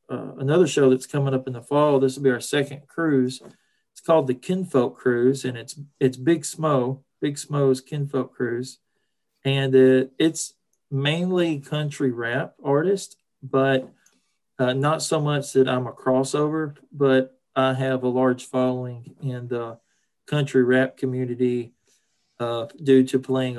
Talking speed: 150 wpm